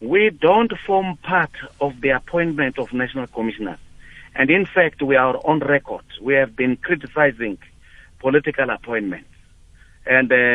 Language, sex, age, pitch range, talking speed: English, male, 50-69, 120-155 Hz, 135 wpm